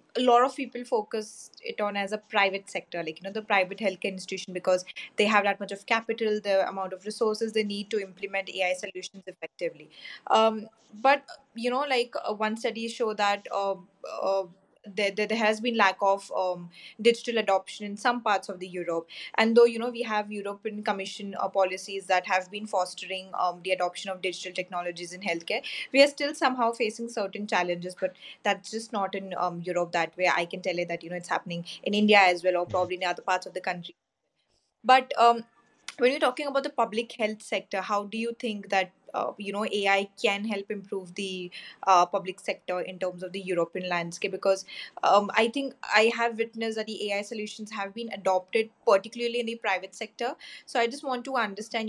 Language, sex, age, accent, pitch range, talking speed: English, female, 20-39, Indian, 185-225 Hz, 205 wpm